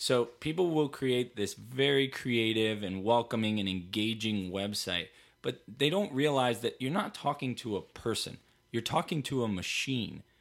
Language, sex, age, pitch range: English, male, 20-39, 110-145 Hz